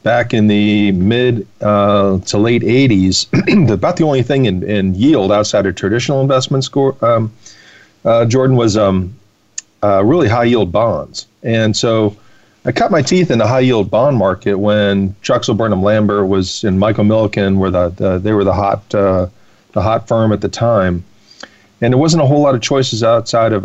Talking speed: 190 wpm